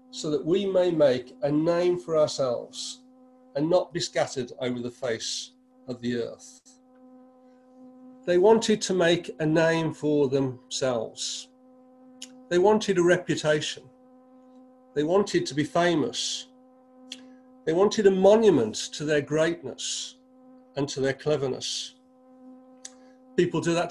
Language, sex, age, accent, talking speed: English, male, 50-69, British, 125 wpm